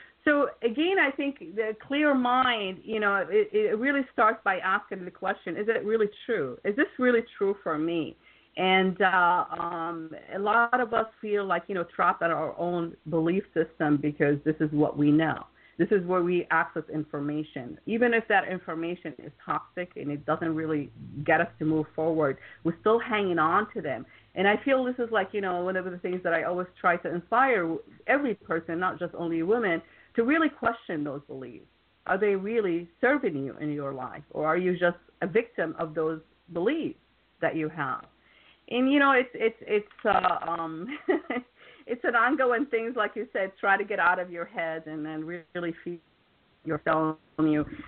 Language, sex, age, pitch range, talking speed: English, female, 50-69, 155-215 Hz, 195 wpm